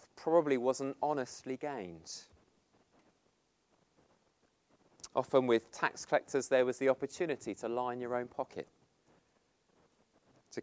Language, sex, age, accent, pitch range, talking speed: English, male, 30-49, British, 120-150 Hz, 100 wpm